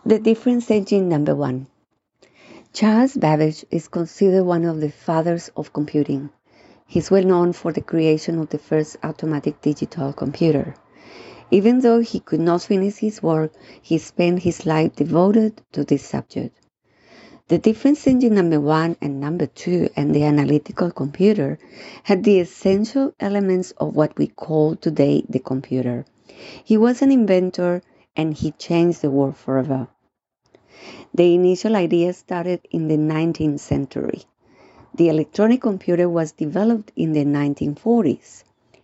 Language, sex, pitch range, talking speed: English, female, 150-195 Hz, 140 wpm